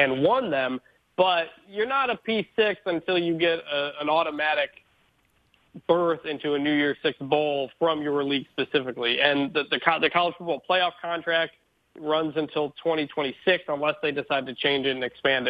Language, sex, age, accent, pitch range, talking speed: English, male, 40-59, American, 140-170 Hz, 170 wpm